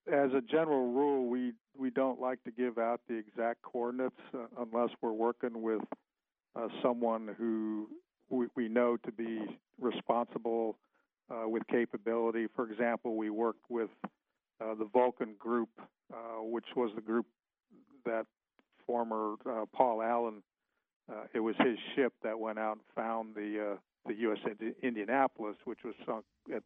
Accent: American